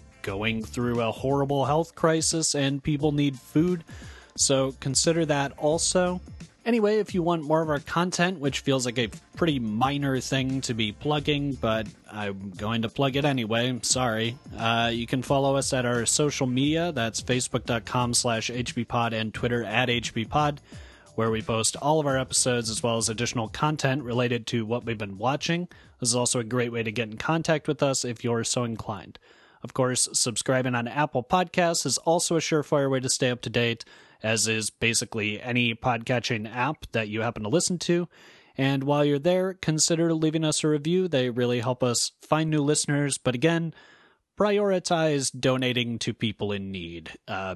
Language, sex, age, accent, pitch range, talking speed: English, male, 30-49, American, 115-150 Hz, 180 wpm